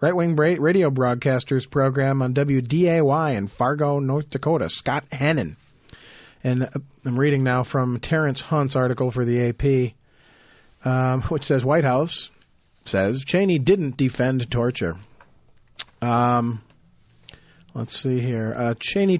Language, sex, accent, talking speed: English, male, American, 125 wpm